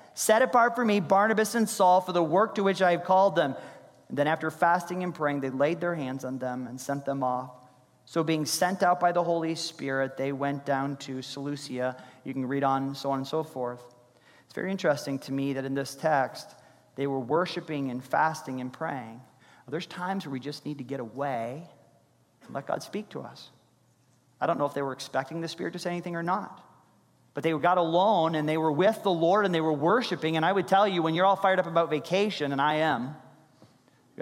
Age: 40-59